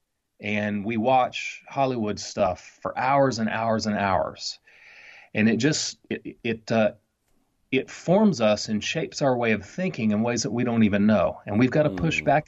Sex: male